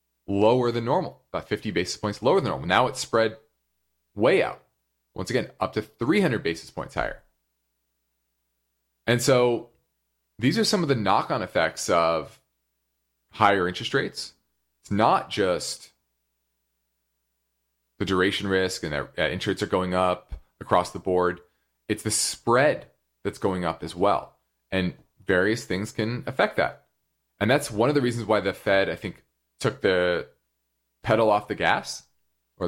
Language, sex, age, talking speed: English, male, 30-49, 150 wpm